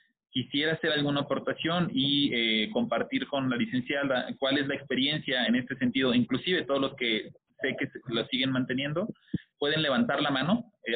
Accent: Mexican